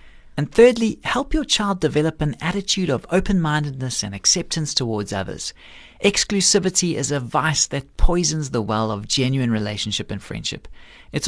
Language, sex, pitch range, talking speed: English, male, 125-175 Hz, 150 wpm